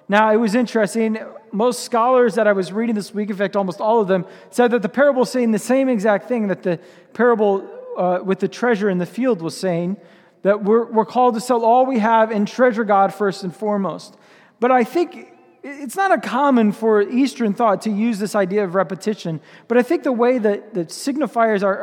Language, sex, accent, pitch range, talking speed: English, male, American, 210-265 Hz, 215 wpm